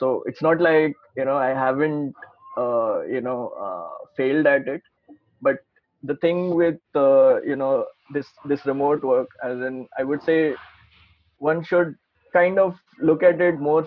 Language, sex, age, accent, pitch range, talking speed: Hindi, male, 20-39, native, 135-170 Hz, 170 wpm